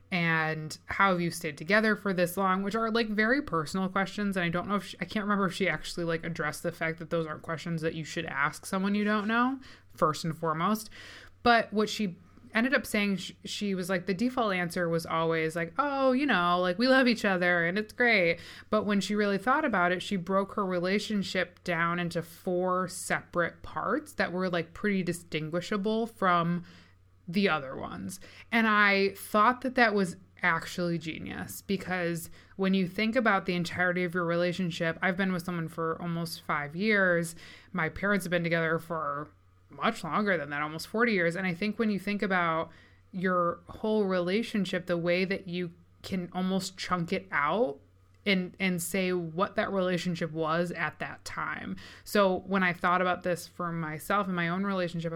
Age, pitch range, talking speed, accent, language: 20-39, 170-205 Hz, 190 wpm, American, English